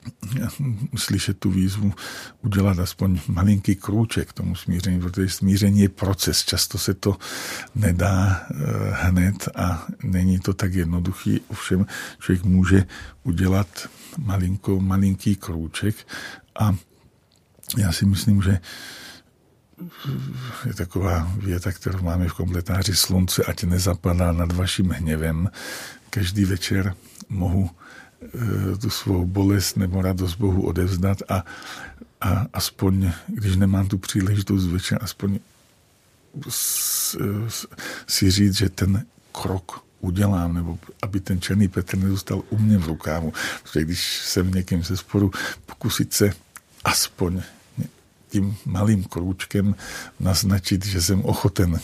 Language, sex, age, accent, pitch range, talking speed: Czech, male, 50-69, native, 90-100 Hz, 115 wpm